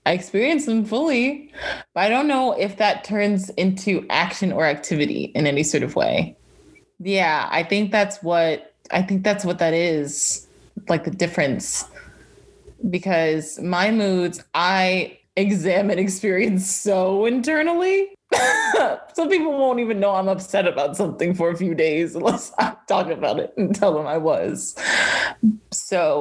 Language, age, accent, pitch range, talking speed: English, 20-39, American, 180-240 Hz, 150 wpm